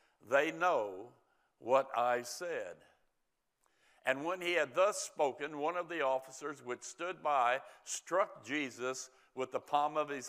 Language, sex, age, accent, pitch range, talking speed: English, male, 60-79, American, 130-160 Hz, 145 wpm